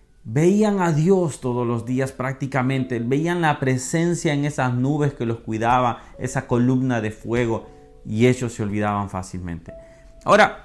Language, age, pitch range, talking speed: Spanish, 40-59, 120-165 Hz, 145 wpm